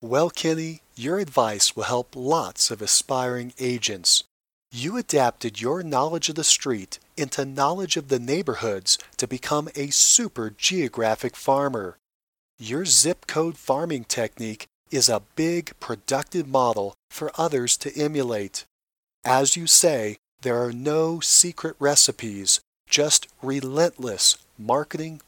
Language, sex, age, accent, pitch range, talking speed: English, male, 40-59, American, 120-160 Hz, 125 wpm